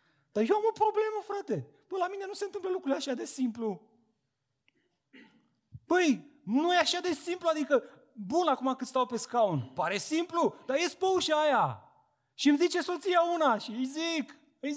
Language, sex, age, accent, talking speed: Romanian, male, 30-49, native, 185 wpm